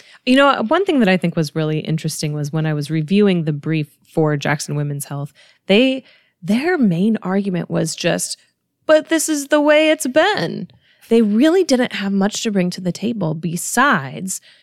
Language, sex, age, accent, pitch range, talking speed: English, female, 20-39, American, 155-200 Hz, 185 wpm